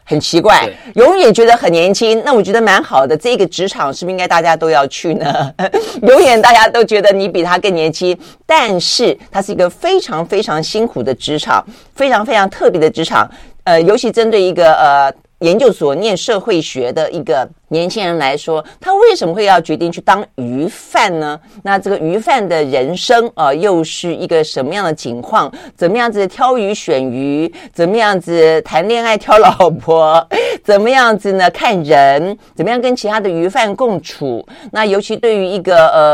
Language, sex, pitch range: Chinese, female, 160-225 Hz